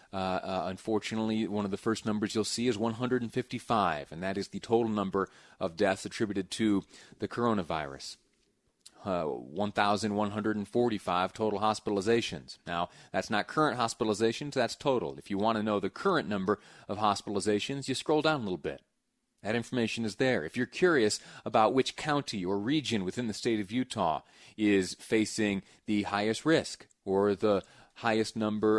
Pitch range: 105-130 Hz